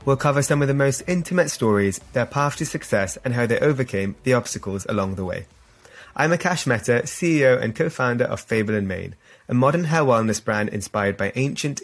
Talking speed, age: 200 wpm, 20-39